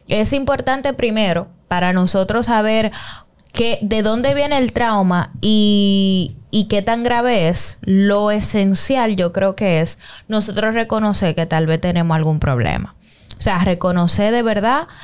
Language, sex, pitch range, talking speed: Spanish, female, 175-220 Hz, 145 wpm